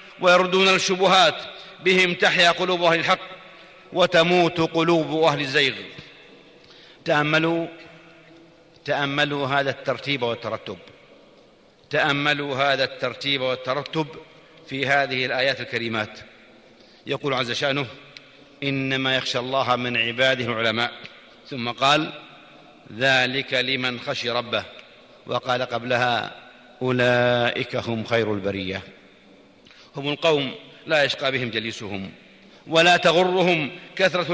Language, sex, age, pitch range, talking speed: Arabic, male, 50-69, 130-170 Hz, 90 wpm